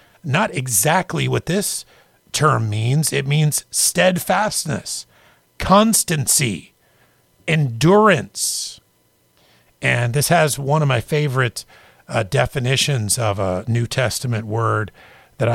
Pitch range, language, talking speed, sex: 110-145 Hz, English, 100 wpm, male